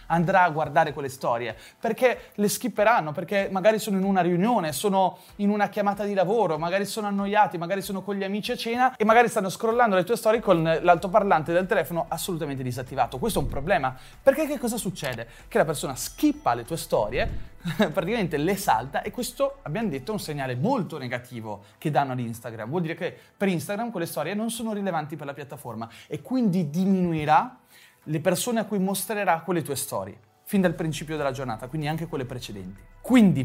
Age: 30-49